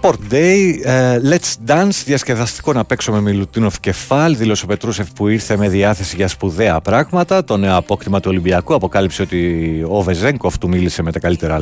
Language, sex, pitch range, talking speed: Greek, male, 95-130 Hz, 175 wpm